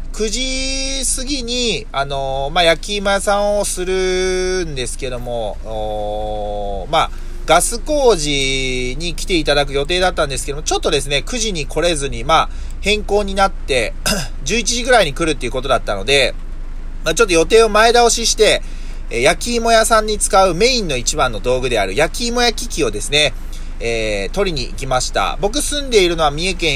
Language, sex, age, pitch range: Japanese, male, 30-49, 130-210 Hz